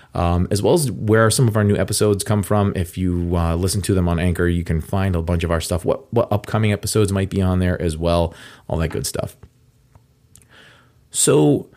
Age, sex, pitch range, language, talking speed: 30-49, male, 90-115 Hz, English, 220 wpm